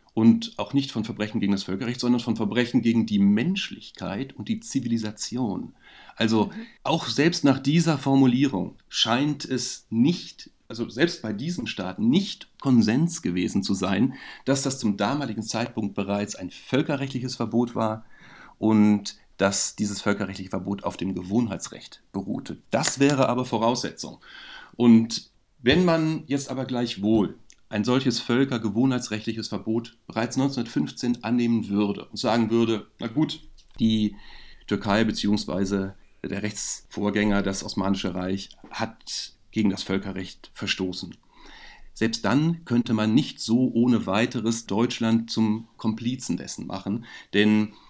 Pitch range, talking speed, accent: 105-125 Hz, 130 wpm, German